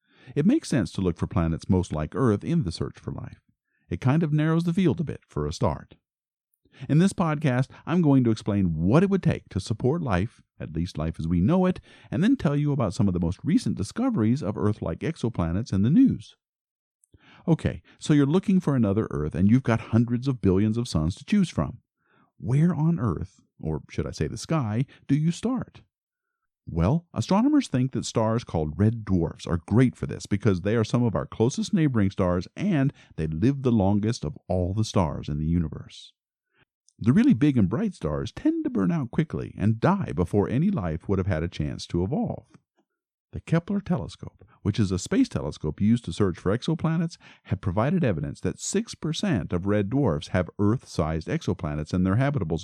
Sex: male